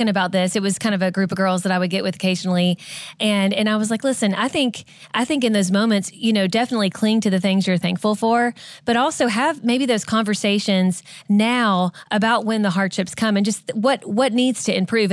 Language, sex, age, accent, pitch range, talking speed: English, female, 20-39, American, 185-220 Hz, 230 wpm